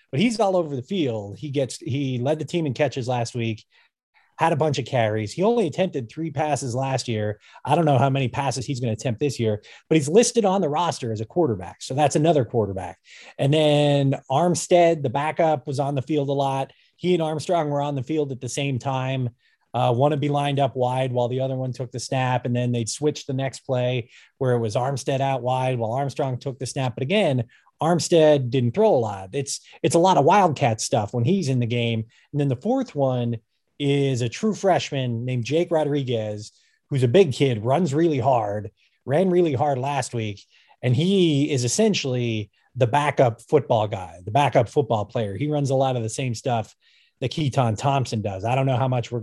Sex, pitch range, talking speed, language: male, 120-150 Hz, 220 wpm, English